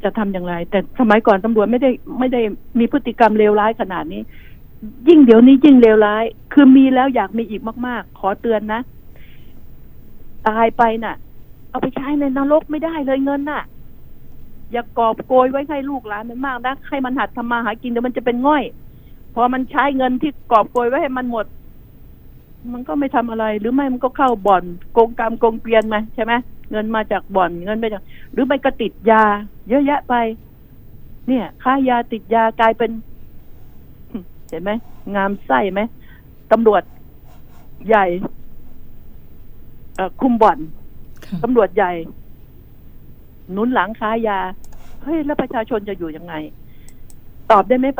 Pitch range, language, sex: 210-255 Hz, Thai, female